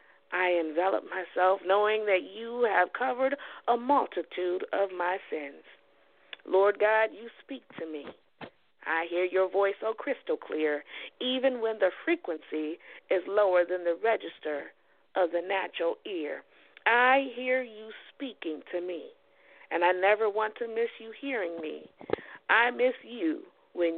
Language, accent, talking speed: English, American, 150 wpm